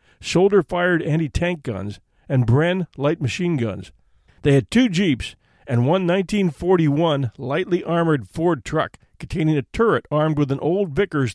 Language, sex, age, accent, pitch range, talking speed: English, male, 50-69, American, 130-175 Hz, 145 wpm